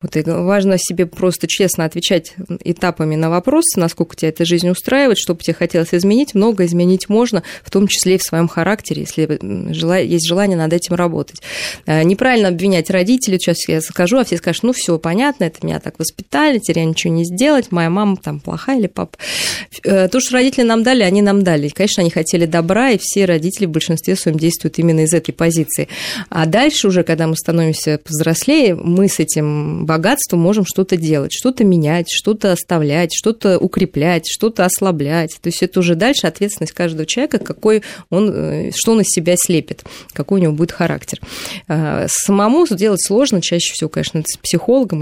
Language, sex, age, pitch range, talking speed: Russian, female, 20-39, 165-200 Hz, 180 wpm